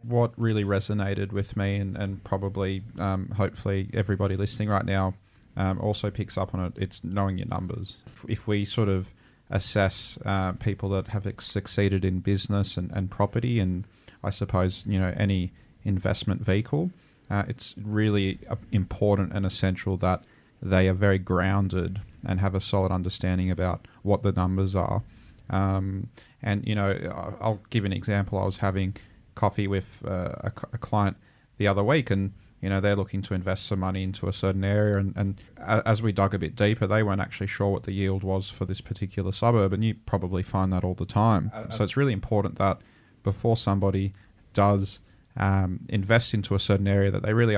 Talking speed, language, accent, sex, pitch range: 185 wpm, English, Australian, male, 95-105 Hz